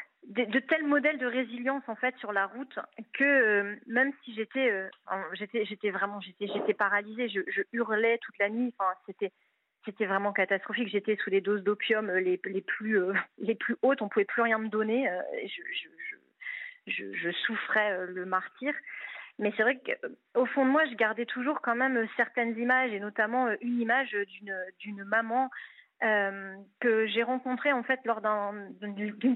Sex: female